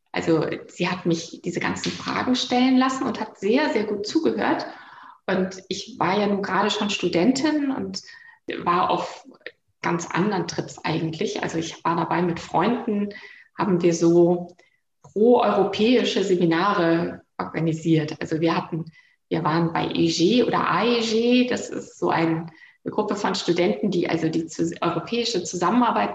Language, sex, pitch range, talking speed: German, female, 170-210 Hz, 145 wpm